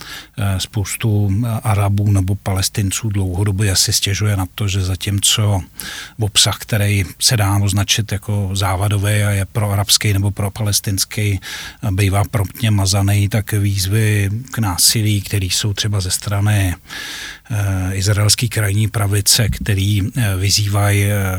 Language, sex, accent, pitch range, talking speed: Czech, male, native, 100-115 Hz, 115 wpm